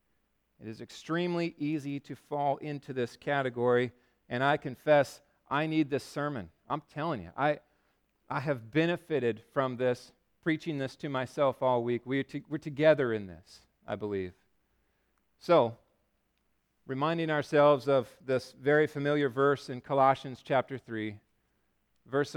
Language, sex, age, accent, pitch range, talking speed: English, male, 40-59, American, 135-190 Hz, 140 wpm